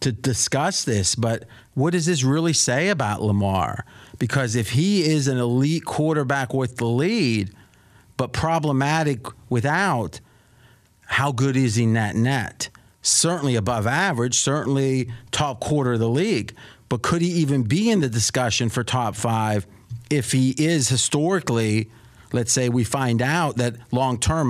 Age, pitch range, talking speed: 40-59, 115-145 Hz, 145 wpm